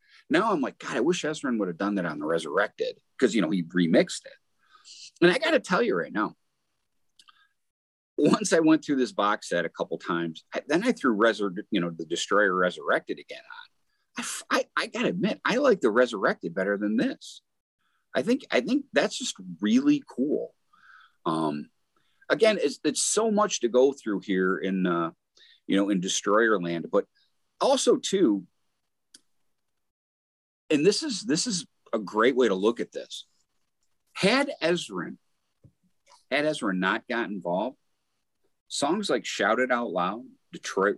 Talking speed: 170 wpm